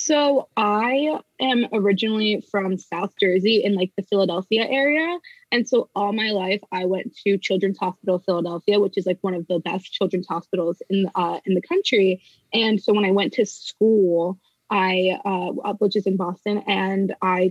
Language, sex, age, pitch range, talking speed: English, female, 20-39, 190-225 Hz, 180 wpm